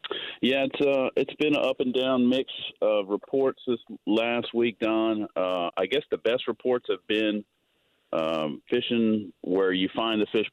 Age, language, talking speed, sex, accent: 40-59, English, 175 wpm, male, American